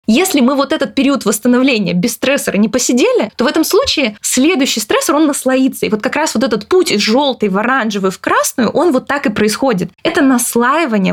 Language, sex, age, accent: Russian, female, 20-39, native